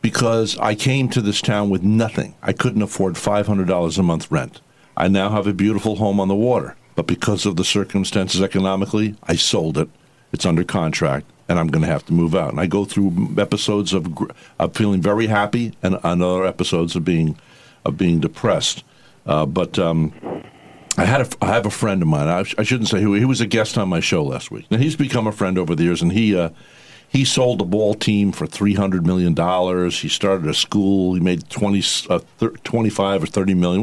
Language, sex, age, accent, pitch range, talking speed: English, male, 60-79, American, 95-125 Hz, 215 wpm